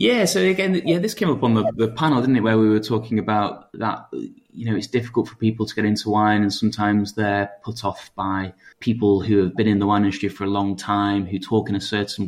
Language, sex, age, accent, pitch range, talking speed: English, male, 20-39, British, 100-115 Hz, 255 wpm